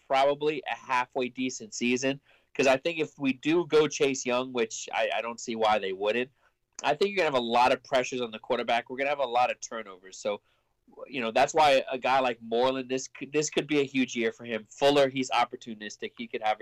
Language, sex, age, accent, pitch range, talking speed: English, male, 30-49, American, 120-145 Hz, 235 wpm